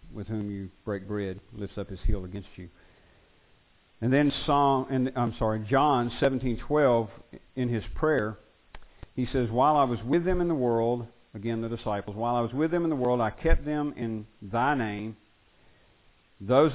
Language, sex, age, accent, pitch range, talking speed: English, male, 50-69, American, 95-120 Hz, 185 wpm